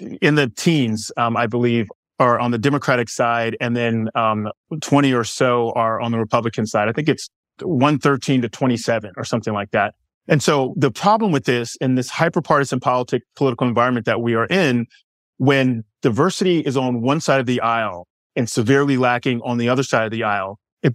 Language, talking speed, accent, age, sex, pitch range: English, 195 wpm, American, 30-49, male, 115-140 Hz